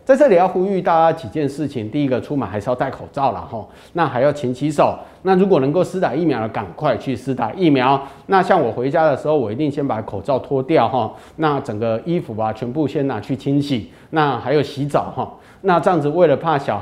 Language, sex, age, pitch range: Chinese, male, 30-49, 130-170 Hz